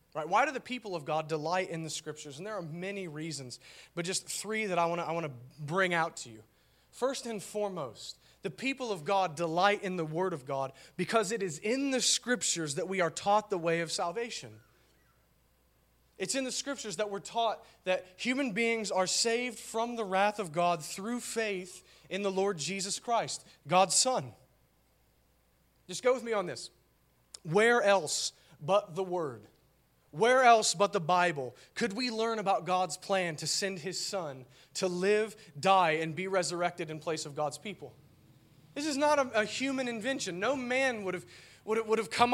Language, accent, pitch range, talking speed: English, American, 170-235 Hz, 190 wpm